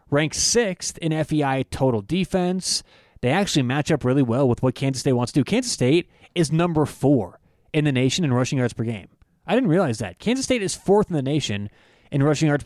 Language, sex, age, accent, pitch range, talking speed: English, male, 30-49, American, 125-155 Hz, 220 wpm